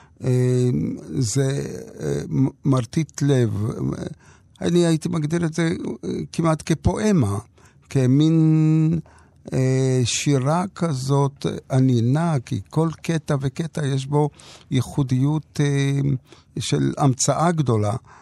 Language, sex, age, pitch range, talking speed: Hebrew, male, 60-79, 120-140 Hz, 80 wpm